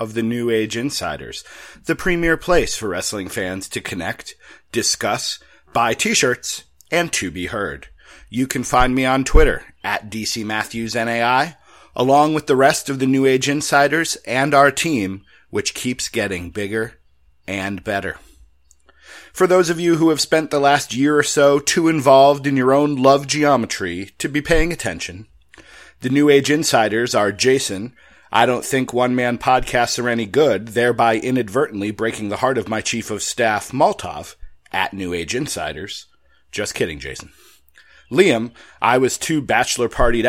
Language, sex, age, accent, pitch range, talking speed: English, male, 40-59, American, 110-145 Hz, 160 wpm